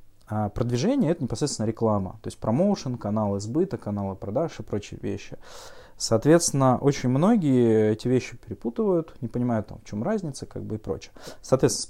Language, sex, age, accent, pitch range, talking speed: Russian, male, 20-39, native, 105-130 Hz, 150 wpm